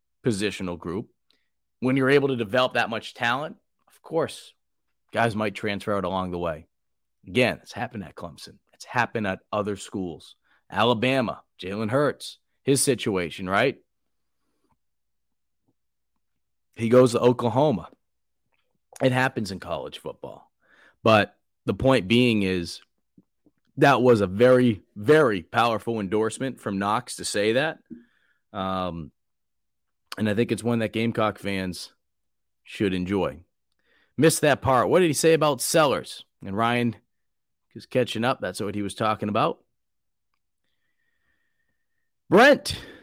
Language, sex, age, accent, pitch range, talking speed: English, male, 30-49, American, 100-125 Hz, 130 wpm